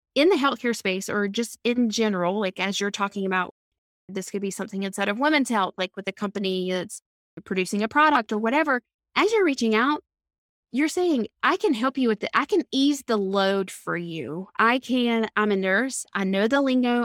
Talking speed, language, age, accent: 210 wpm, English, 20-39, American